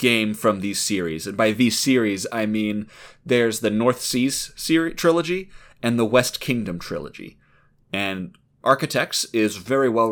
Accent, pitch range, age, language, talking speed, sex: American, 115-160 Hz, 30-49, English, 155 wpm, male